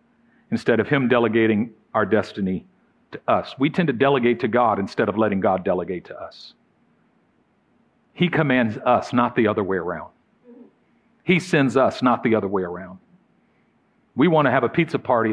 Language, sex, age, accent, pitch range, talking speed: English, male, 50-69, American, 125-185 Hz, 170 wpm